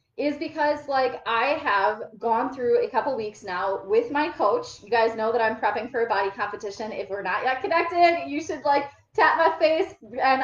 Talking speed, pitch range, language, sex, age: 205 wpm, 210-290 Hz, English, female, 20-39